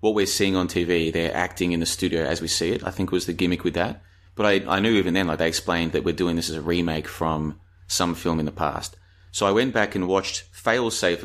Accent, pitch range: Australian, 85-100 Hz